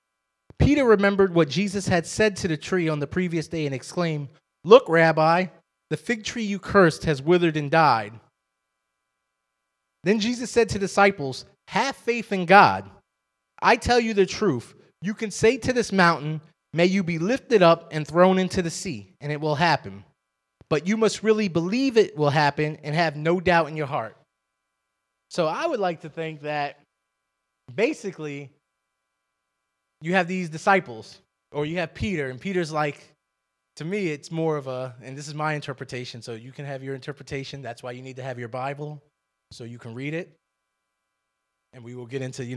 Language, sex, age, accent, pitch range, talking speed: English, male, 30-49, American, 105-165 Hz, 185 wpm